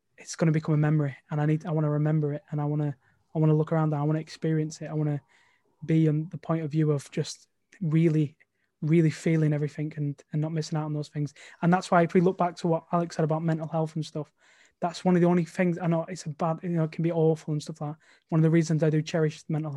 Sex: male